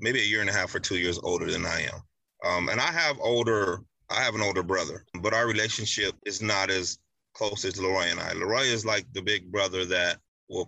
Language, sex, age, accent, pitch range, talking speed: English, male, 30-49, American, 95-110 Hz, 235 wpm